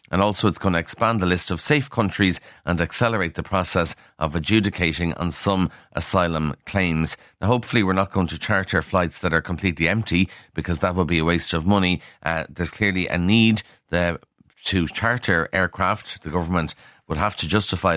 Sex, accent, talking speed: male, Irish, 185 wpm